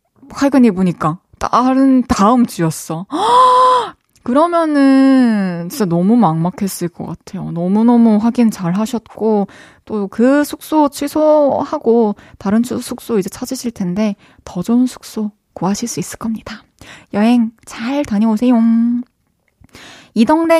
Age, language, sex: 20-39, Korean, female